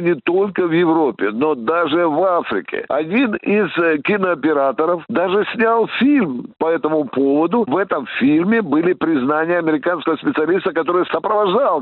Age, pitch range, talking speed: 60-79, 155-230 Hz, 130 wpm